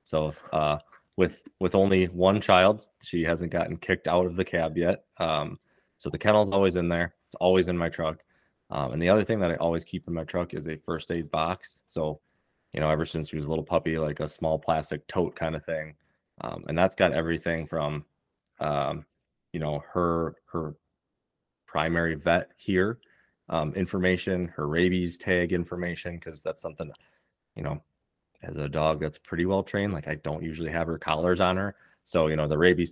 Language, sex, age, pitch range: English, male, 20-39, 80-90 Hz